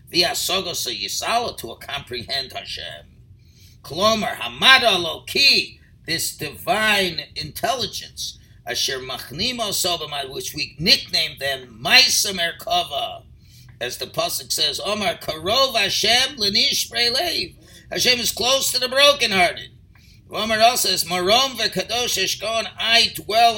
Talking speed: 115 wpm